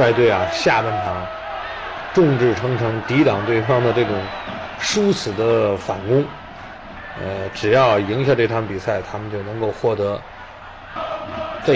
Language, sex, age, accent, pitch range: Chinese, male, 30-49, native, 115-160 Hz